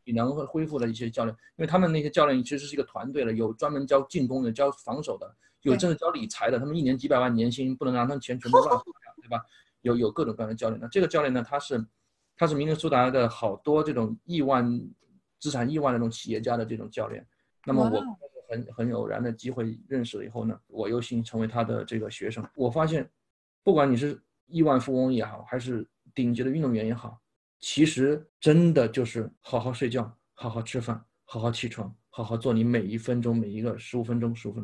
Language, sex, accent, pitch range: Chinese, male, native, 115-160 Hz